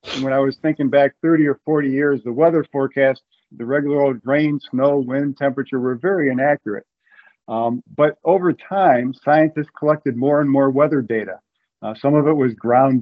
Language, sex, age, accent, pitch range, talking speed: English, male, 50-69, American, 125-145 Hz, 185 wpm